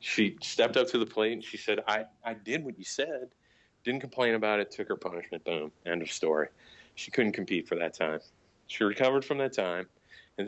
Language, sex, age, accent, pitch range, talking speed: English, male, 40-59, American, 95-130 Hz, 220 wpm